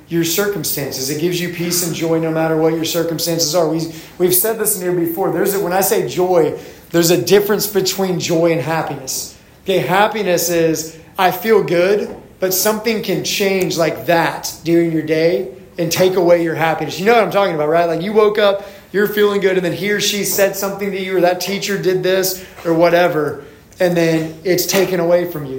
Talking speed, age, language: 205 wpm, 30-49, English